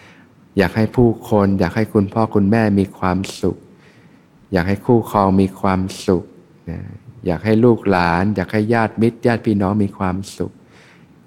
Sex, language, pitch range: male, Thai, 90-110 Hz